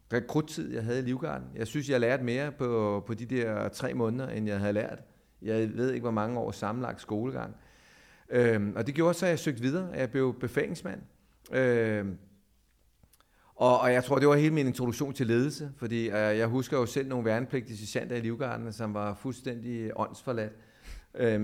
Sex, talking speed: male, 190 wpm